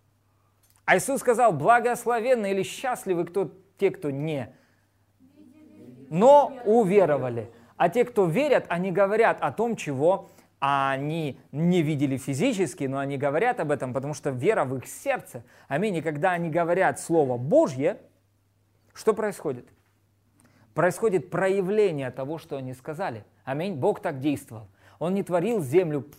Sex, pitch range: male, 130-190 Hz